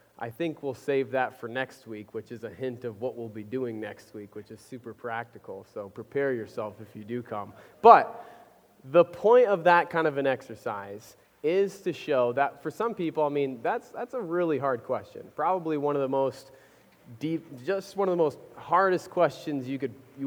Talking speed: 205 wpm